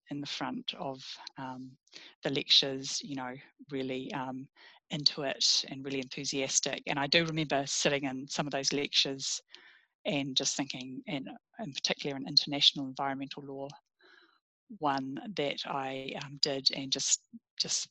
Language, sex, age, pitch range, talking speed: English, female, 30-49, 135-160 Hz, 145 wpm